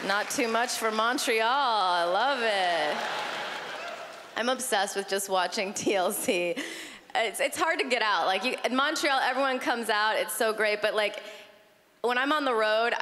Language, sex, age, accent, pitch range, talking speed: English, female, 20-39, American, 220-305 Hz, 170 wpm